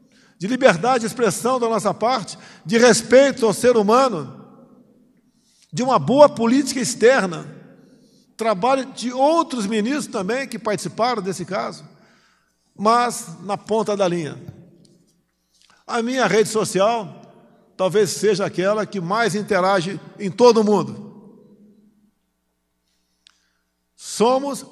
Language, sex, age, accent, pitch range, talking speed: Portuguese, male, 50-69, Brazilian, 205-250 Hz, 110 wpm